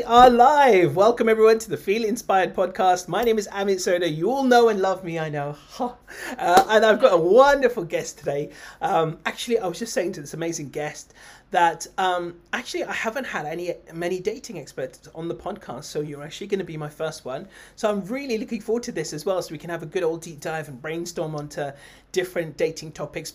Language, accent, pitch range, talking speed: English, British, 155-200 Hz, 225 wpm